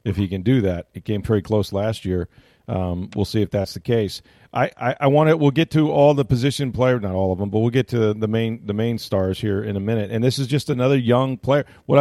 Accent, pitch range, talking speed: American, 105-125 Hz, 280 wpm